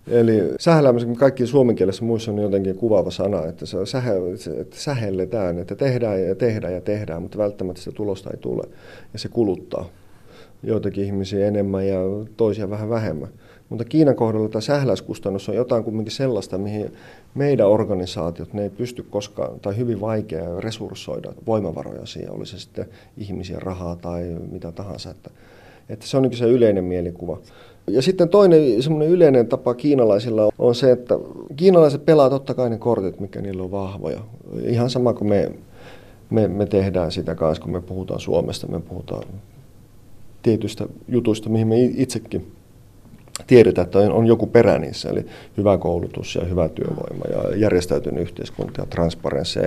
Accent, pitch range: native, 95-120 Hz